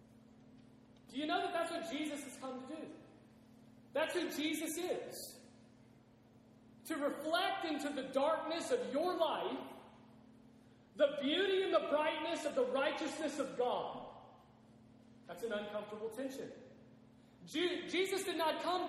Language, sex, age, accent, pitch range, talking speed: English, male, 40-59, American, 270-320 Hz, 130 wpm